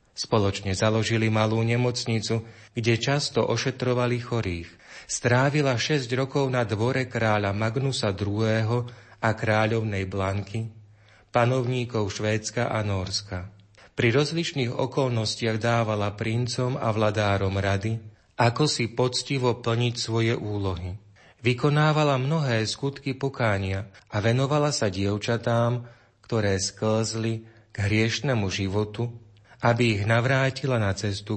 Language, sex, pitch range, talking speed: Slovak, male, 105-125 Hz, 105 wpm